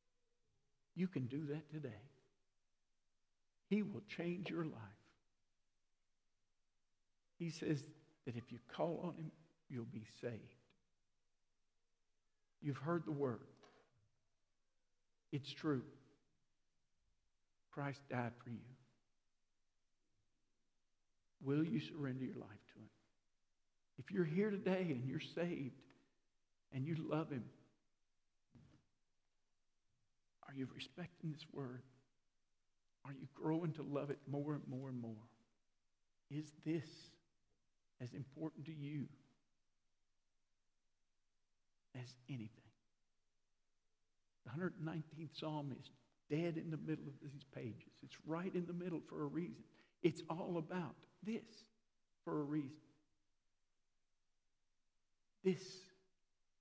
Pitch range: 95-150 Hz